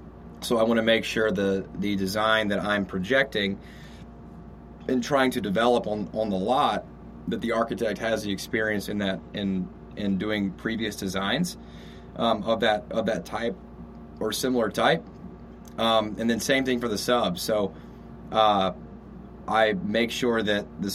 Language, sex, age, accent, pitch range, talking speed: English, male, 30-49, American, 95-115 Hz, 160 wpm